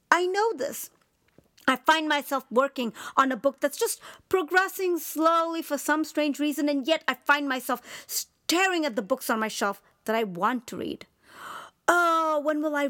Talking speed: 180 wpm